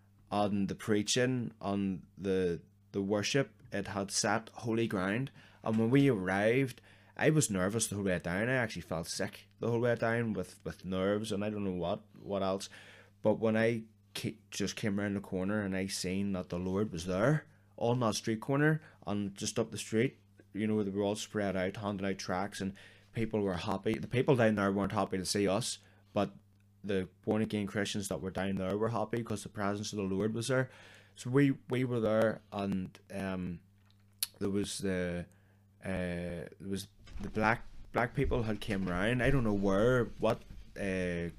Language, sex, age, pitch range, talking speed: English, male, 20-39, 95-110 Hz, 195 wpm